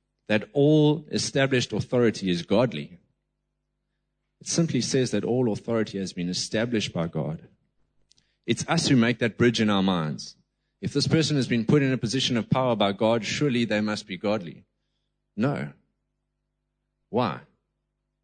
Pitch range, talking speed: 85-130 Hz, 150 wpm